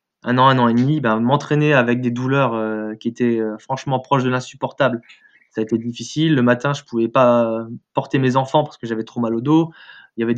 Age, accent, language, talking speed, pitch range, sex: 20-39, French, French, 245 wpm, 115-140 Hz, male